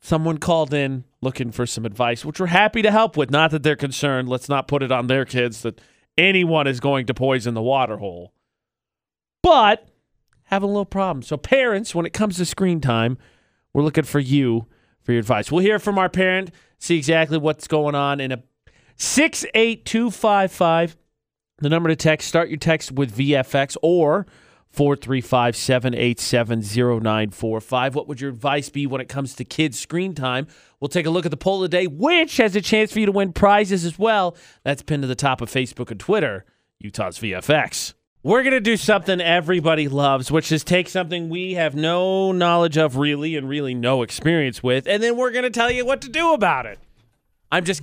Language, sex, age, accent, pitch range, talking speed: English, male, 40-59, American, 130-180 Hz, 200 wpm